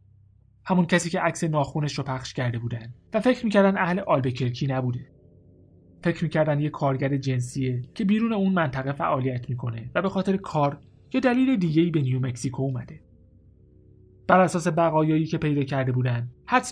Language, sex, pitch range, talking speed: Persian, male, 120-160 Hz, 160 wpm